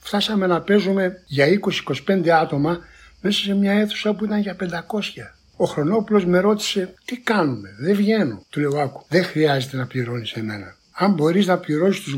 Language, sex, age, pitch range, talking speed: Greek, male, 60-79, 145-200 Hz, 170 wpm